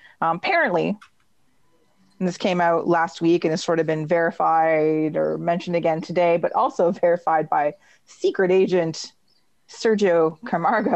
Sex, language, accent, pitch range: female, English, American, 165-200 Hz